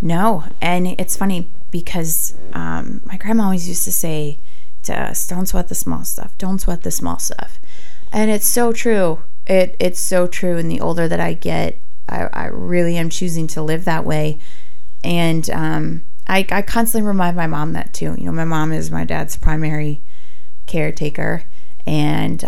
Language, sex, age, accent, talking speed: English, female, 20-39, American, 180 wpm